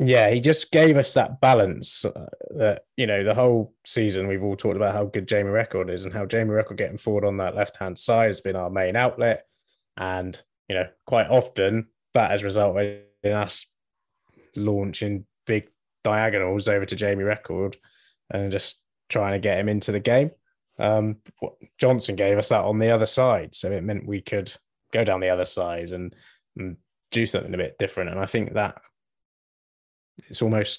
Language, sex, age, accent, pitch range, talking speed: English, male, 20-39, British, 100-110 Hz, 190 wpm